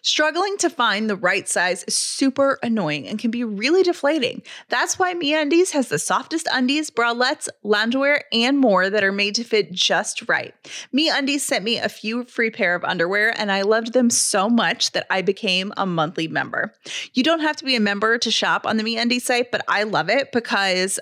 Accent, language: American, English